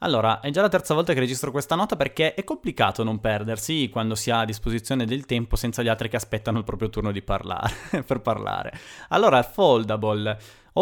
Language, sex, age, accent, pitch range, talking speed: Italian, male, 20-39, native, 105-125 Hz, 205 wpm